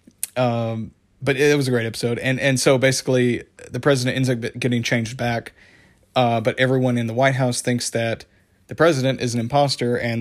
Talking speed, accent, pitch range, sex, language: 195 wpm, American, 115-130 Hz, male, English